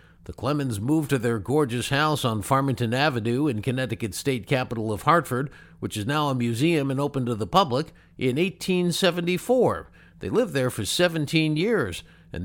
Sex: male